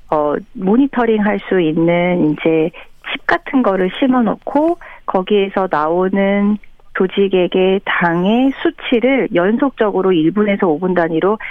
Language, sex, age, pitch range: Korean, female, 40-59, 175-235 Hz